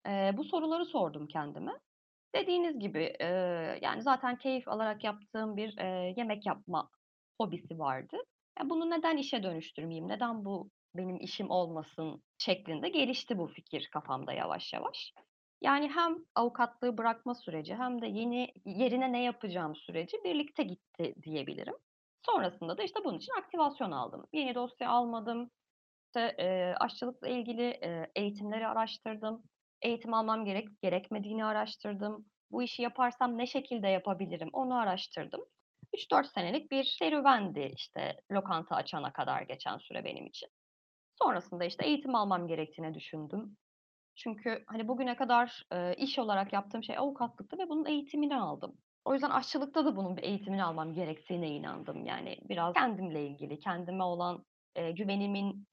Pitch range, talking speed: 180-255 Hz, 140 wpm